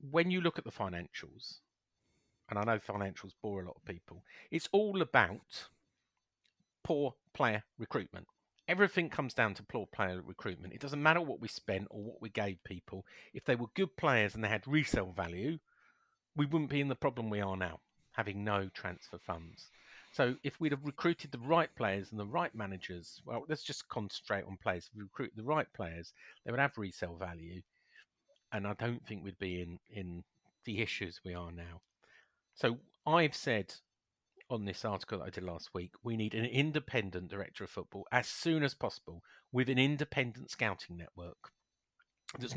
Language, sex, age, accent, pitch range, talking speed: English, male, 50-69, British, 95-140 Hz, 185 wpm